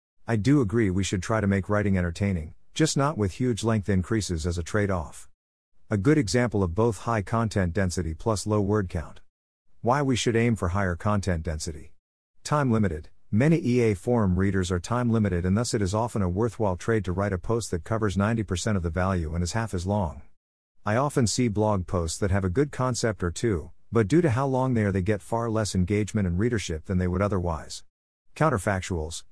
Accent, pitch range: American, 90-115 Hz